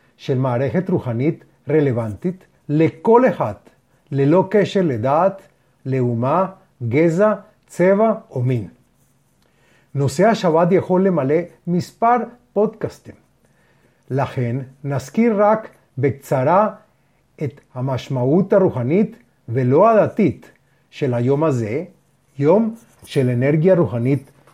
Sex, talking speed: male, 90 wpm